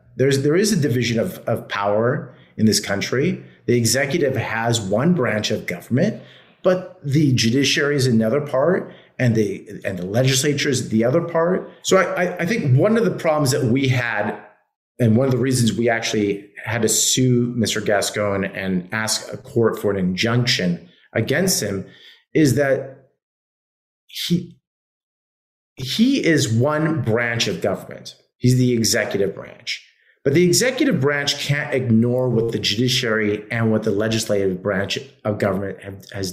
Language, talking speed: English, 155 wpm